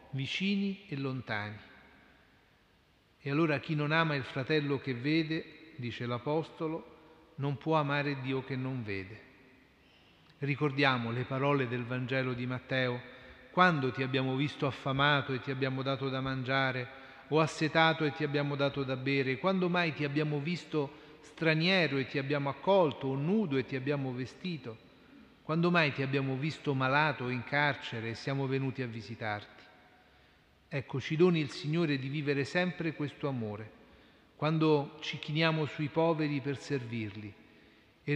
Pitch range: 130-155 Hz